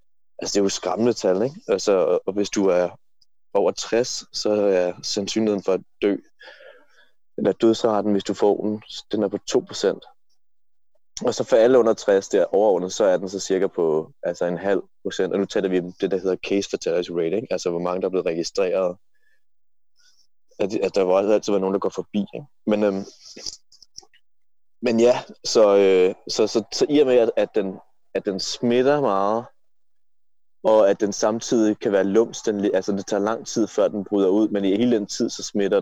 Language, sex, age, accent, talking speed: Danish, male, 20-39, native, 205 wpm